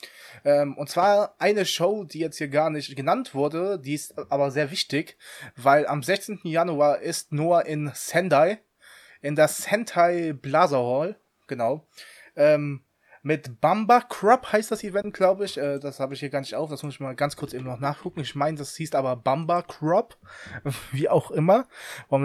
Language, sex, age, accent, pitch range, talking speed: English, male, 20-39, German, 135-175 Hz, 185 wpm